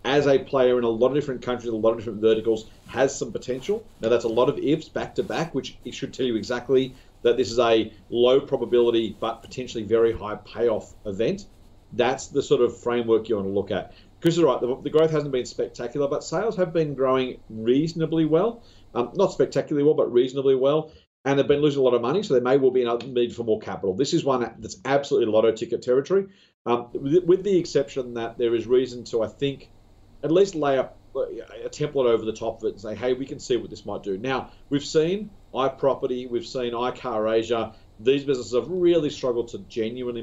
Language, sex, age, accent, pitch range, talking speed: English, male, 40-59, Australian, 115-140 Hz, 225 wpm